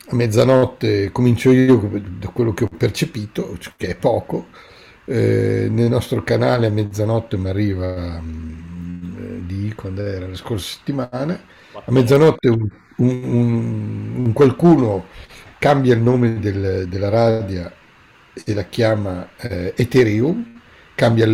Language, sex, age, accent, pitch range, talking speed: Italian, male, 60-79, native, 95-120 Hz, 120 wpm